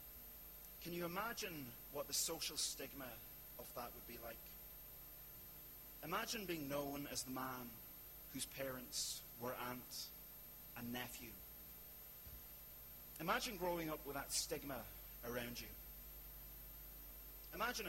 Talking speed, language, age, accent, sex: 110 wpm, English, 30-49, British, male